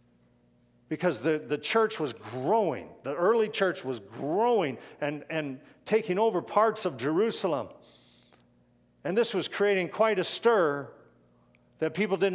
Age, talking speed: 50-69, 135 wpm